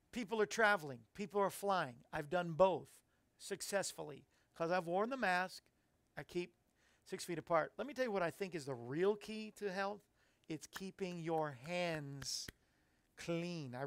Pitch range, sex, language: 155-195 Hz, male, English